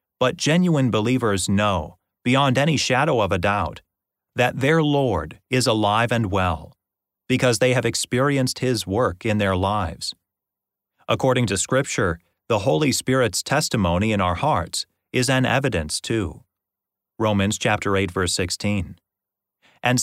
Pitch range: 100-125 Hz